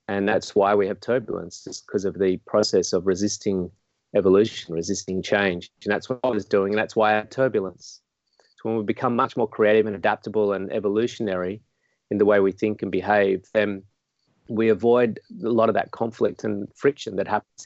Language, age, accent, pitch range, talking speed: English, 30-49, Australian, 100-115 Hz, 195 wpm